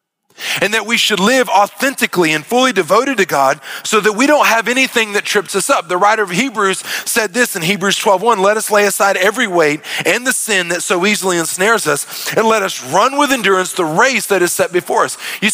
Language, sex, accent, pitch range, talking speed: English, male, American, 185-235 Hz, 230 wpm